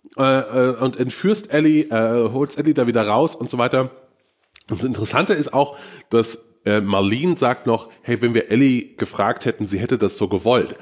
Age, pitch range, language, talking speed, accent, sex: 30-49, 115-160 Hz, German, 185 wpm, German, male